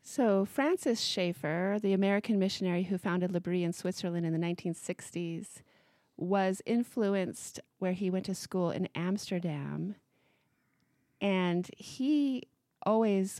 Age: 30-49